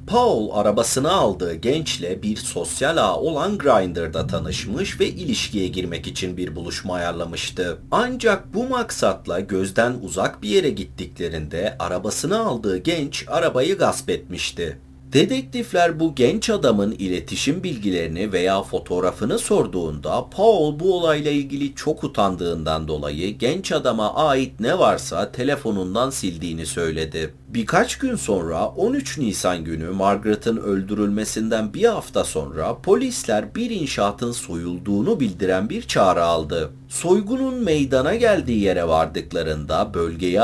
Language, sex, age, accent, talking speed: Turkish, male, 40-59, native, 120 wpm